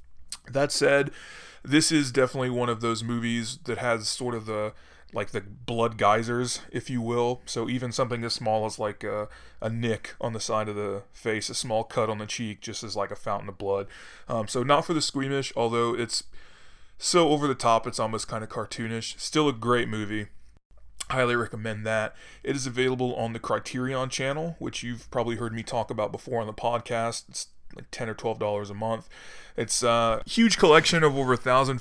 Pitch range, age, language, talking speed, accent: 110-130 Hz, 20-39, English, 200 wpm, American